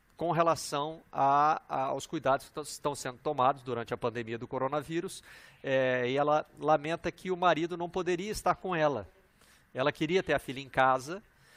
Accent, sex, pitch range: Brazilian, male, 130-175 Hz